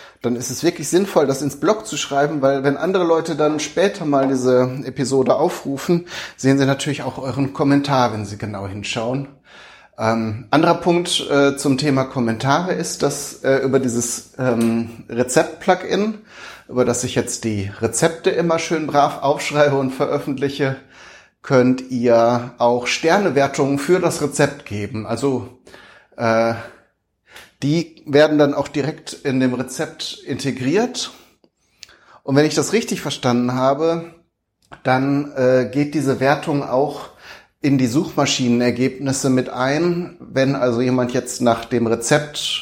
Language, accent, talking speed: German, German, 140 wpm